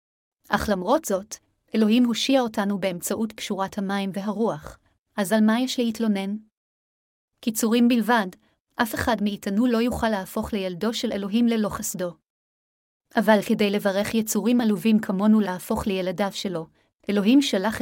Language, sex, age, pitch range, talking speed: Hebrew, female, 30-49, 200-230 Hz, 130 wpm